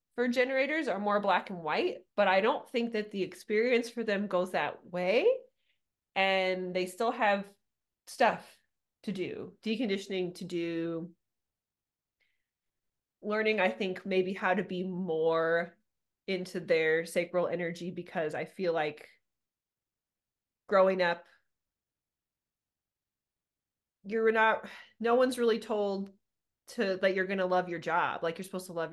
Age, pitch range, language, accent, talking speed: 30-49, 170-210 Hz, English, American, 135 wpm